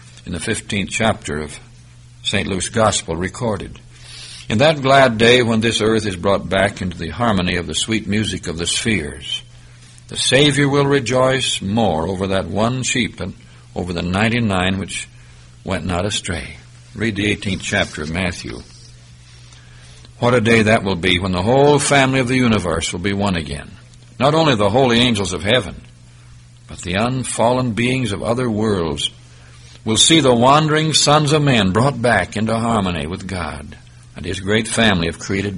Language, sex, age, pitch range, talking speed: English, male, 60-79, 85-120 Hz, 175 wpm